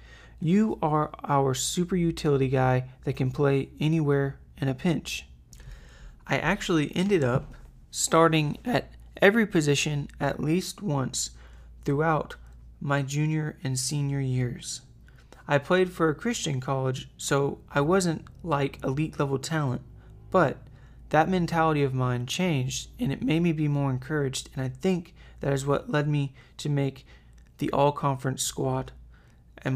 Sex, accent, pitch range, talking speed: male, American, 120-155 Hz, 140 wpm